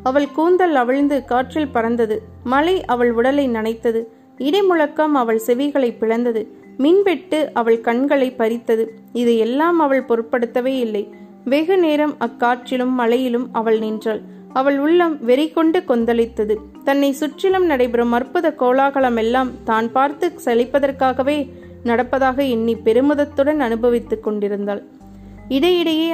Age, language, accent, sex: 30-49, Tamil, native, female